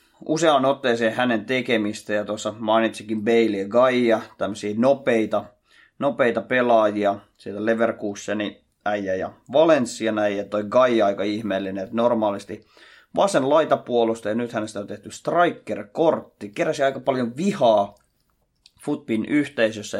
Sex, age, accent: male, 20-39, native